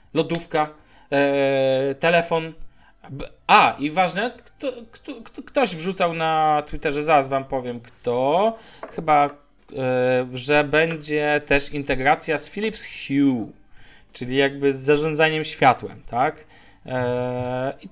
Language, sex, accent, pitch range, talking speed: Polish, male, native, 130-175 Hz, 95 wpm